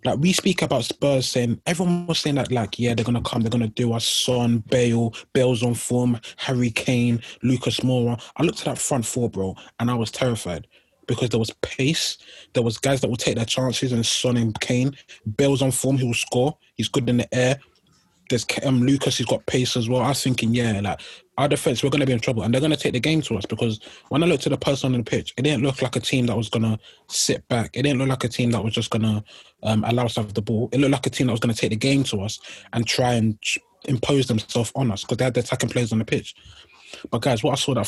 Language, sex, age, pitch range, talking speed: English, male, 20-39, 115-135 Hz, 275 wpm